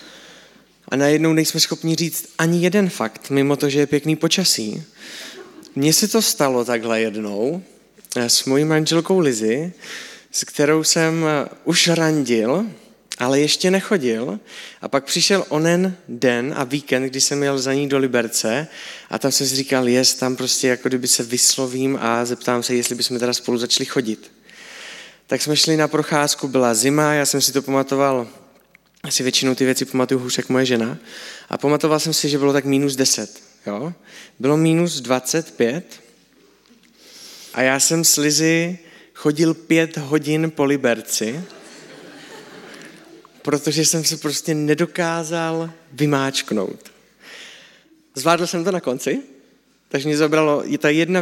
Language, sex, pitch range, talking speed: Czech, male, 130-165 Hz, 145 wpm